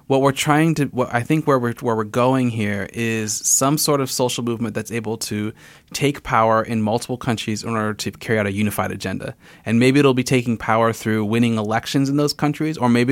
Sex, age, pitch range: male, 30-49, 110-130 Hz